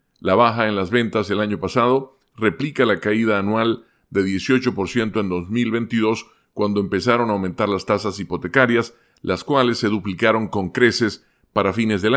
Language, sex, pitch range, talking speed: Spanish, male, 100-120 Hz, 160 wpm